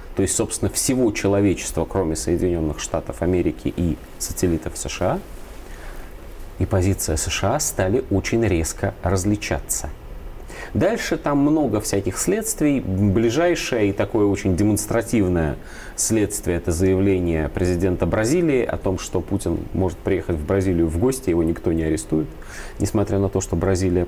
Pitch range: 85-100 Hz